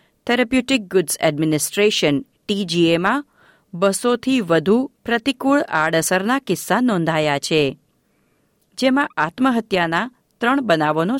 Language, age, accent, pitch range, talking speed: Gujarati, 50-69, native, 165-235 Hz, 80 wpm